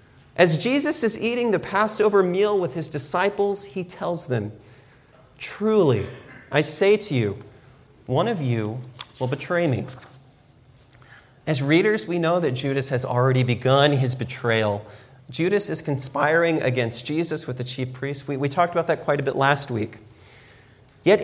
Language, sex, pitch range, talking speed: English, male, 130-190 Hz, 155 wpm